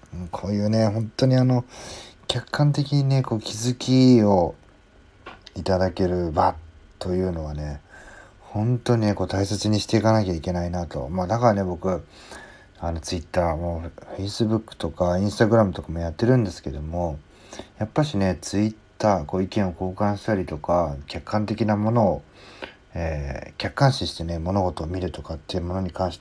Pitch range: 85-105 Hz